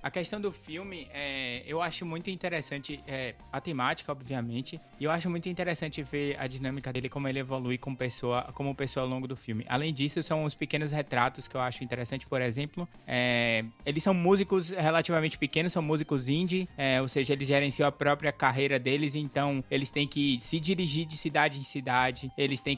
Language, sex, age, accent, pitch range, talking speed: Portuguese, male, 20-39, Brazilian, 130-155 Hz, 185 wpm